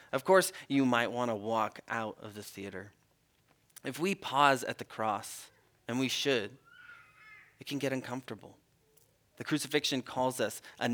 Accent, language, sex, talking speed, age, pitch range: American, English, male, 160 wpm, 30-49, 110-140 Hz